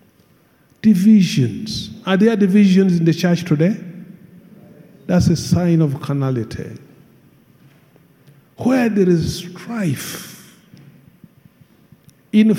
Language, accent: English, Nigerian